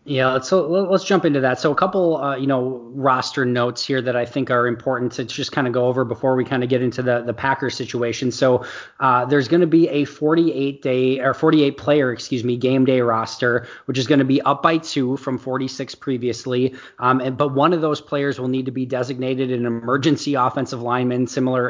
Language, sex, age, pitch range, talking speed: English, male, 20-39, 125-145 Hz, 225 wpm